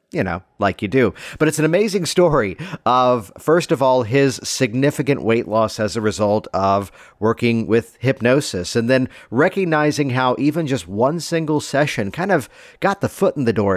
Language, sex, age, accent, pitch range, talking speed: English, male, 50-69, American, 105-130 Hz, 185 wpm